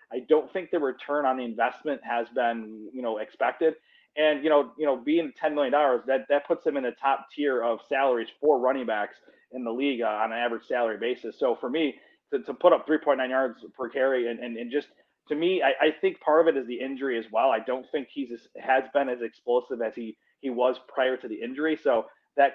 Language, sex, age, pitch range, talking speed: English, male, 30-49, 120-155 Hz, 240 wpm